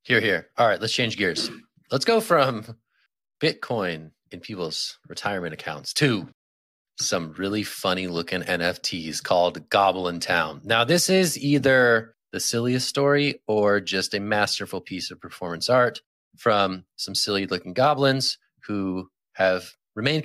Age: 30-49